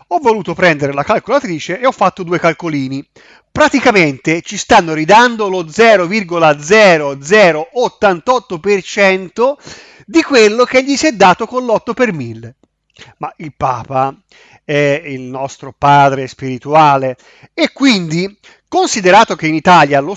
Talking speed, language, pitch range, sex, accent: 125 wpm, Italian, 155-235 Hz, male, native